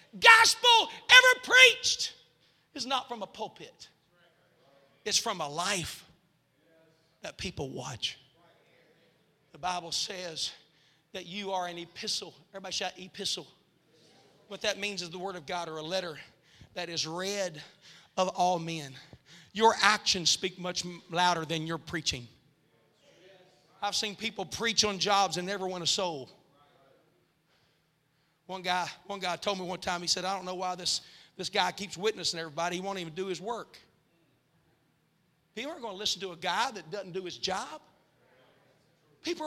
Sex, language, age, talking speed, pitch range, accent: male, English, 40-59, 155 wpm, 165-220 Hz, American